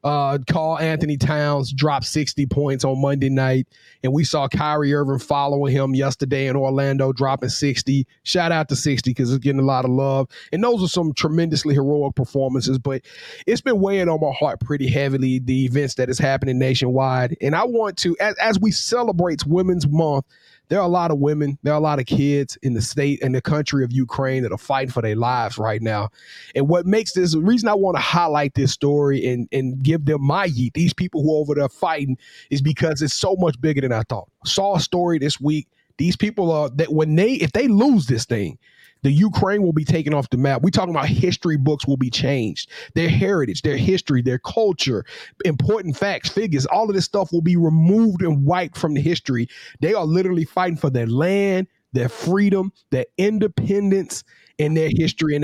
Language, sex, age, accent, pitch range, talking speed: English, male, 30-49, American, 135-170 Hz, 210 wpm